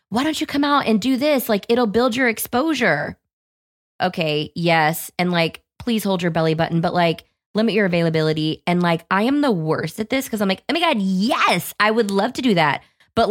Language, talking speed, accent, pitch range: English, 220 wpm, American, 185-230 Hz